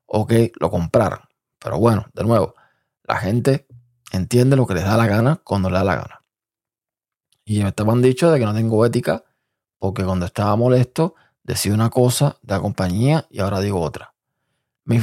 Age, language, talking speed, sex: 20-39, Spanish, 185 wpm, male